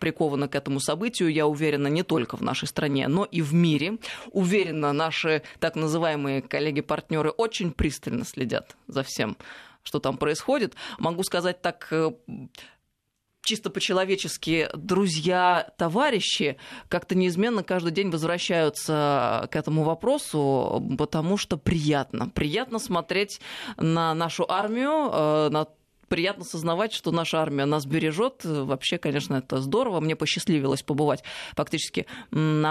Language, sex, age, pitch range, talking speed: Russian, female, 20-39, 145-185 Hz, 125 wpm